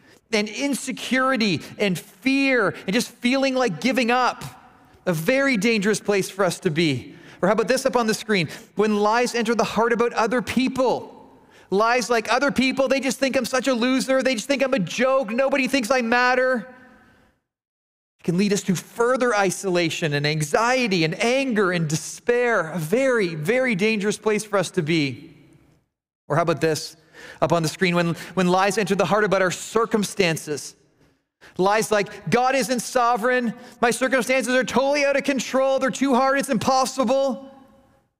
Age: 30-49